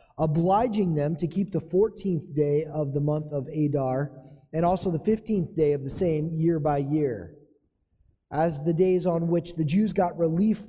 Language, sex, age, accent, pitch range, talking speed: English, male, 20-39, American, 150-180 Hz, 180 wpm